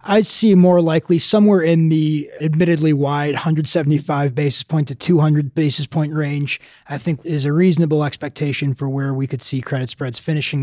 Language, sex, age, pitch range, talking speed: English, male, 20-39, 140-170 Hz, 175 wpm